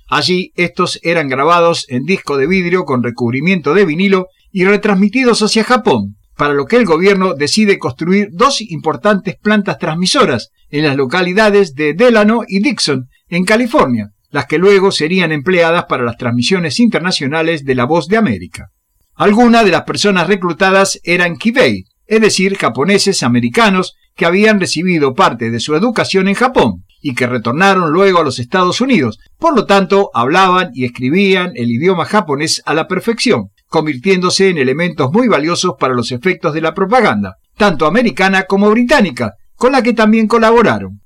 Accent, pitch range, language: Argentinian, 145-205 Hz, Spanish